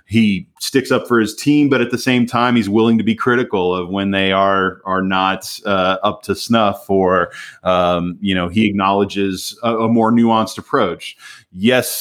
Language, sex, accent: English, male, American